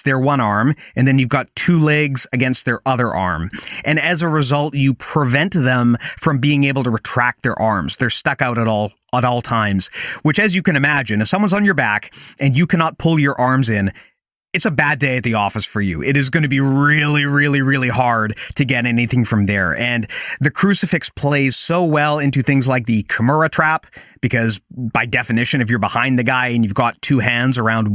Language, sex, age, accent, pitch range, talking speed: English, male, 30-49, American, 115-145 Hz, 215 wpm